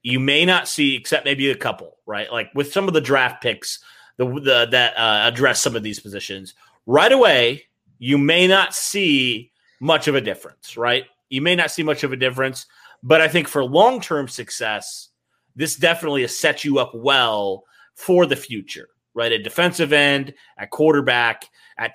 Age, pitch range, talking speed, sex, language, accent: 30-49, 125-165 Hz, 180 wpm, male, English, American